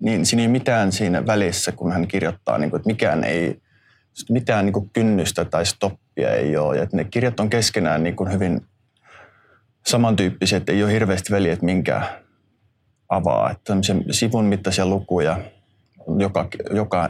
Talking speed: 155 wpm